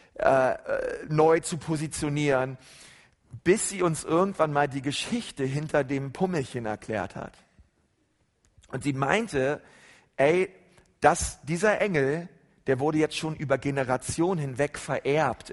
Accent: German